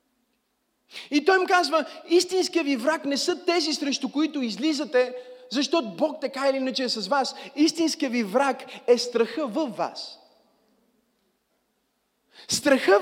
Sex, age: male, 30-49